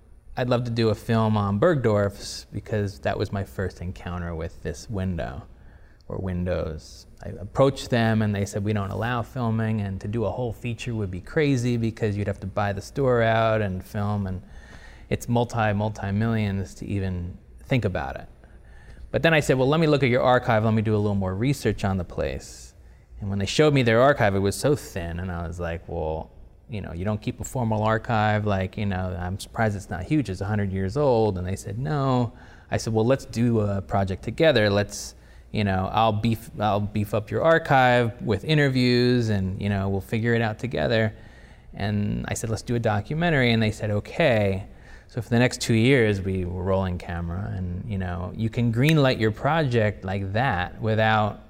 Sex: male